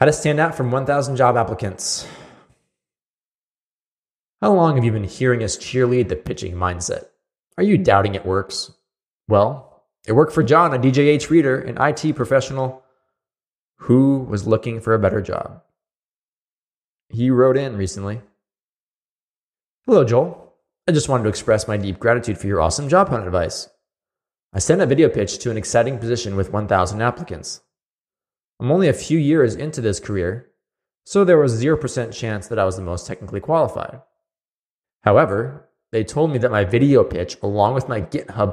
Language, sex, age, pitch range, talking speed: English, male, 20-39, 100-145 Hz, 165 wpm